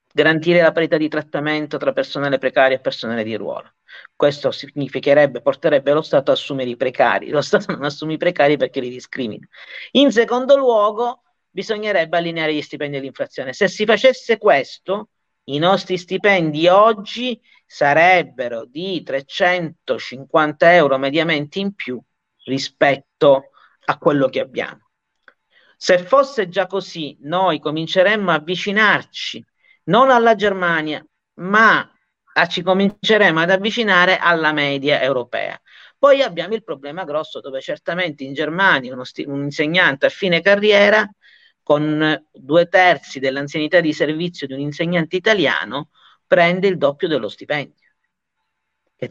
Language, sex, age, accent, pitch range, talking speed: Italian, male, 40-59, native, 145-190 Hz, 135 wpm